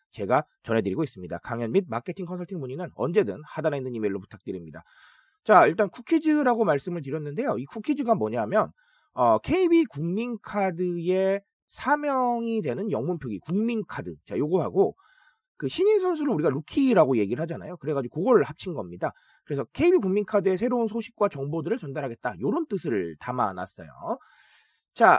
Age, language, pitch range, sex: 30-49, Korean, 175-240 Hz, male